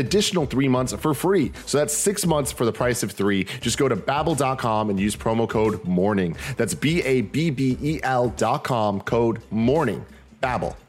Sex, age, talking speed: male, 30-49, 155 wpm